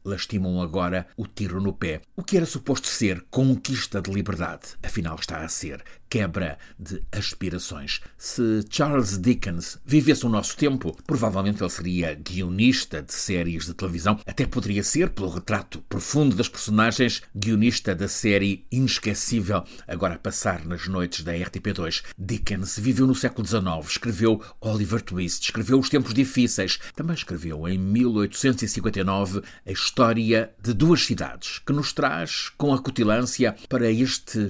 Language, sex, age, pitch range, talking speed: Portuguese, male, 50-69, 95-125 Hz, 145 wpm